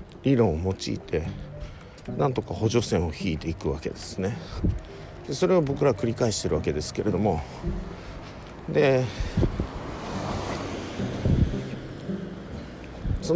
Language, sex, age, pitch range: Japanese, male, 50-69, 90-135 Hz